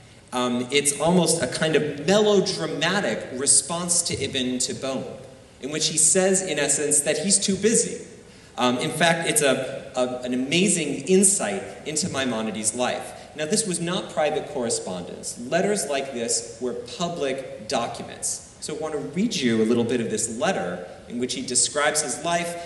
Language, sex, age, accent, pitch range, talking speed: English, male, 30-49, American, 125-170 Hz, 160 wpm